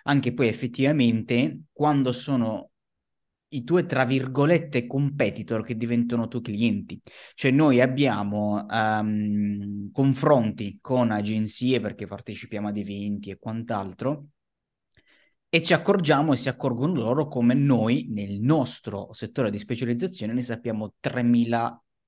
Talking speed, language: 115 wpm, Italian